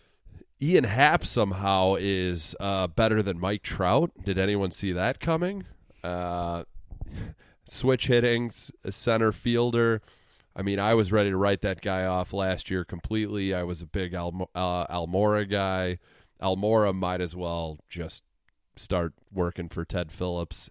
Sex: male